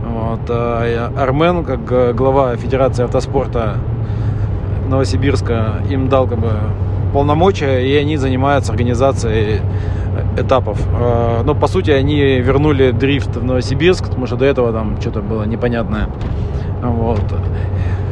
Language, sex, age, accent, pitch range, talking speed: Russian, male, 20-39, native, 110-145 Hz, 115 wpm